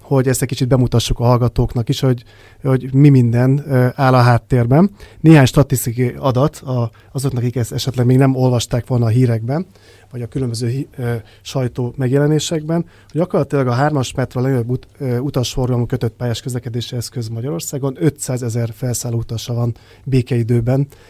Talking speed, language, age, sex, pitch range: 160 wpm, Hungarian, 30-49, male, 115-135 Hz